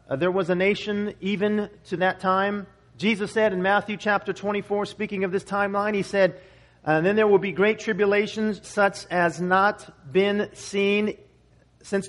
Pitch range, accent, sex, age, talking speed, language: 140-195 Hz, American, male, 40-59, 170 wpm, English